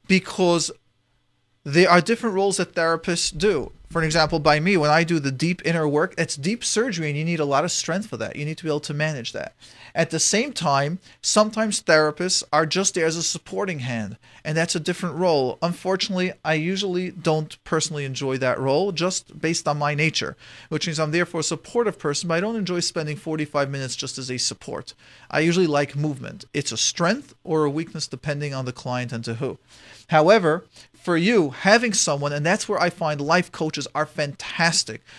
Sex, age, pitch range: male, 40-59, 145-175 Hz